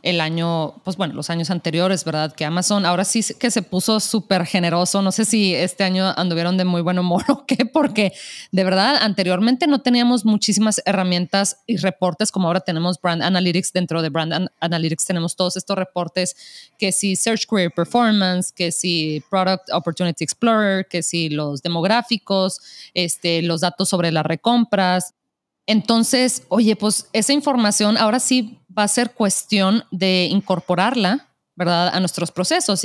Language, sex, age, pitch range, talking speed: Spanish, female, 20-39, 175-215 Hz, 170 wpm